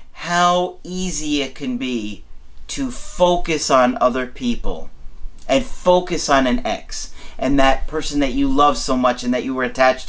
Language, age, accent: English, 40-59, American